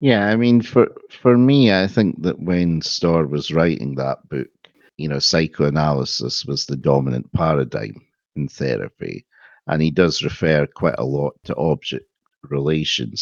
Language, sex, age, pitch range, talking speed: English, male, 60-79, 70-80 Hz, 155 wpm